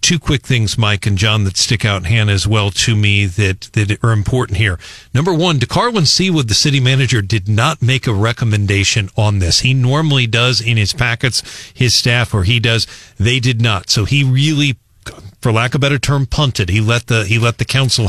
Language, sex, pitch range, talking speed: English, male, 105-135 Hz, 215 wpm